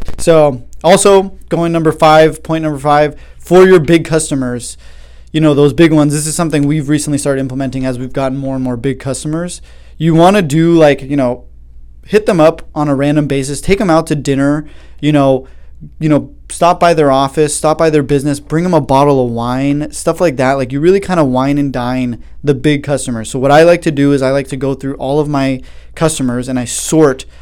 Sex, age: male, 20-39